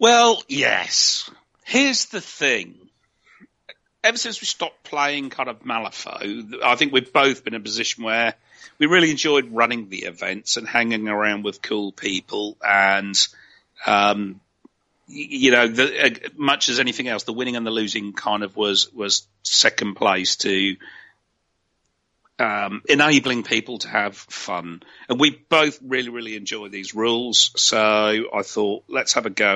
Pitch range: 100-135 Hz